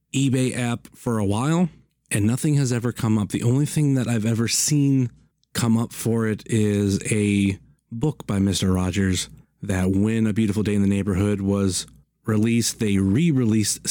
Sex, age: male, 30-49